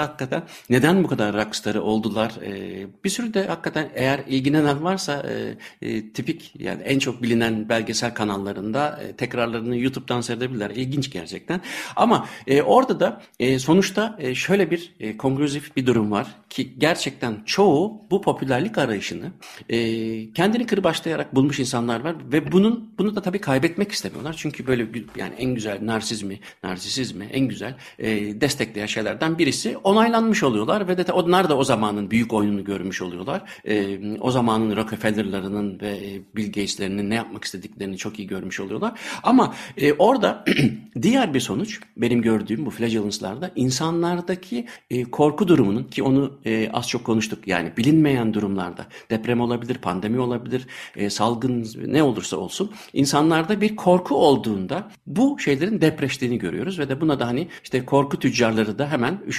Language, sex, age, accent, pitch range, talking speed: Turkish, male, 60-79, native, 110-155 Hz, 155 wpm